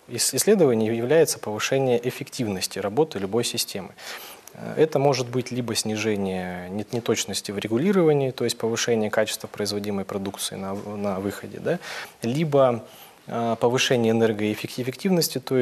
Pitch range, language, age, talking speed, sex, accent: 100-120 Hz, Russian, 20-39, 110 wpm, male, native